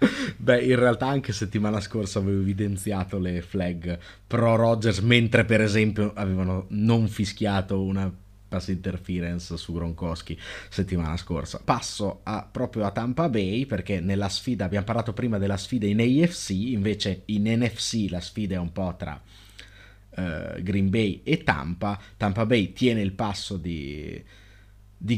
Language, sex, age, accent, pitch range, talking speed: Italian, male, 30-49, native, 95-115 Hz, 145 wpm